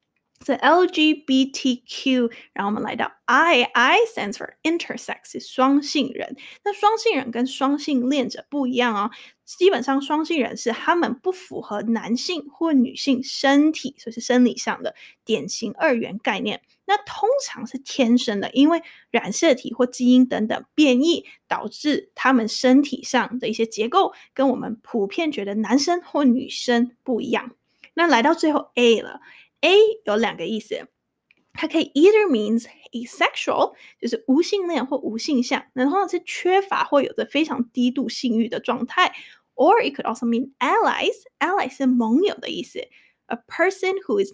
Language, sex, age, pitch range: Chinese, female, 20-39, 235-320 Hz